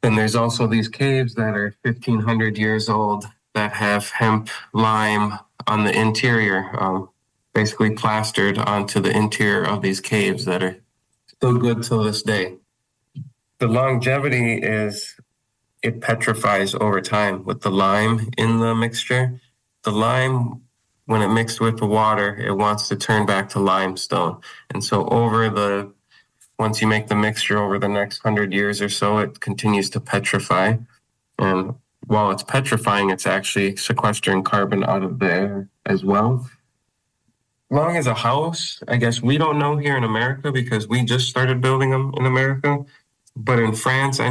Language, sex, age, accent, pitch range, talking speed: English, male, 20-39, American, 105-125 Hz, 160 wpm